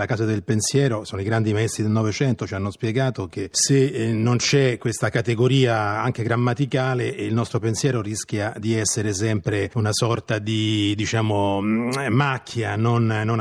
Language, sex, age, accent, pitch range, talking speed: Italian, male, 30-49, native, 110-135 Hz, 155 wpm